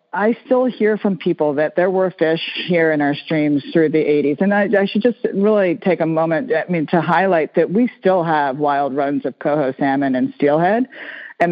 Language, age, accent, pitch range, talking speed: English, 40-59, American, 145-175 Hz, 215 wpm